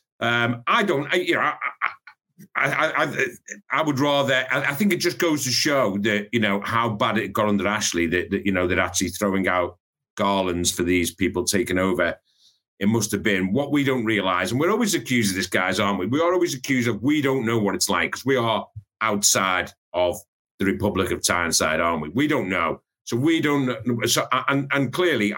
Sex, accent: male, British